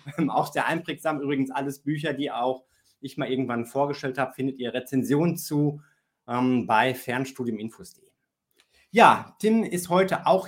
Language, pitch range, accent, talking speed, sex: German, 135-175 Hz, German, 145 wpm, male